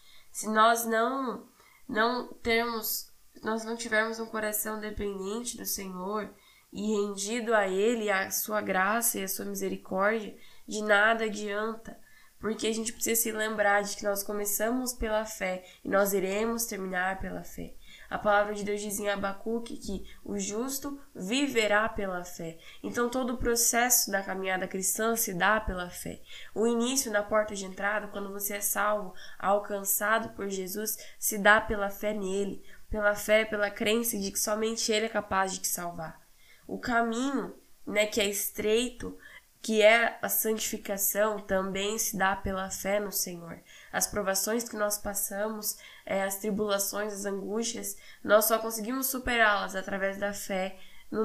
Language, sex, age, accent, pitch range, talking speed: Portuguese, female, 10-29, Brazilian, 200-225 Hz, 155 wpm